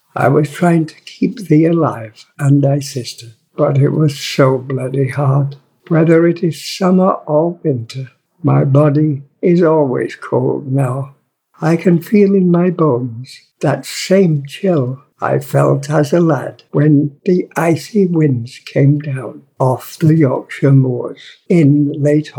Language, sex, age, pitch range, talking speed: English, male, 60-79, 140-170 Hz, 145 wpm